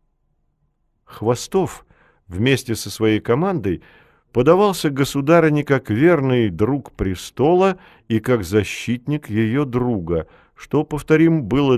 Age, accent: 50-69, native